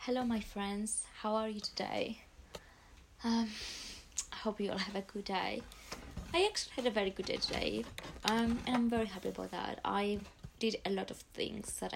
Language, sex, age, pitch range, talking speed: English, female, 20-39, 185-215 Hz, 190 wpm